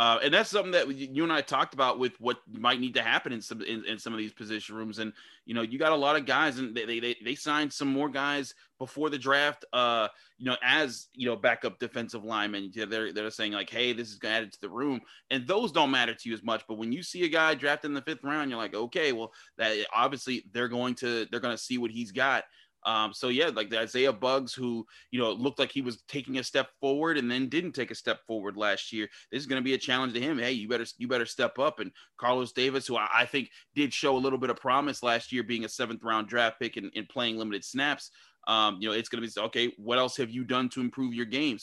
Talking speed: 270 wpm